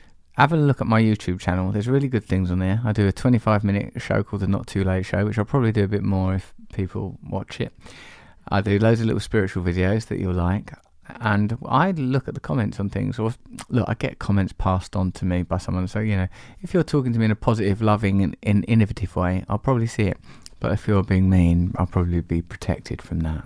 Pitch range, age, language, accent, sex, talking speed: 95-120 Hz, 30-49, English, British, male, 240 wpm